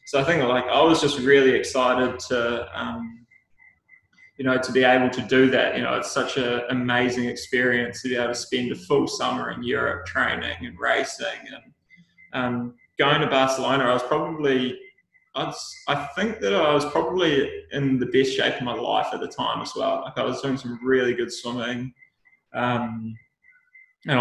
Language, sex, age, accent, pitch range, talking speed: English, male, 20-39, Australian, 125-150 Hz, 190 wpm